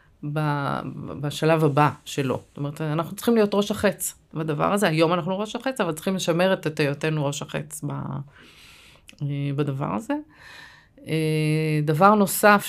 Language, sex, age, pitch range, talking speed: Hebrew, female, 30-49, 150-205 Hz, 130 wpm